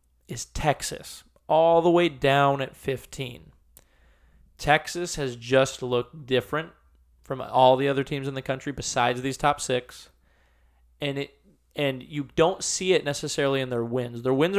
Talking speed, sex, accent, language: 155 wpm, male, American, English